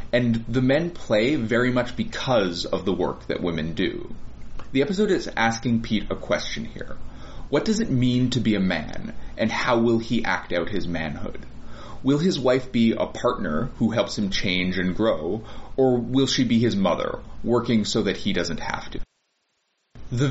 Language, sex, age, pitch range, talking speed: English, male, 30-49, 95-130 Hz, 185 wpm